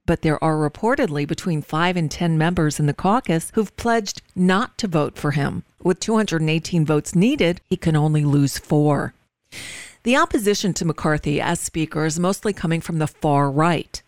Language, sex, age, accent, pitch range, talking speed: English, female, 40-59, American, 155-195 Hz, 175 wpm